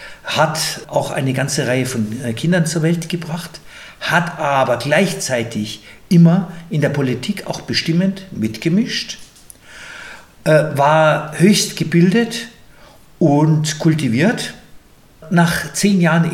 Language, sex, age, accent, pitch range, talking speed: German, male, 50-69, German, 135-170 Hz, 105 wpm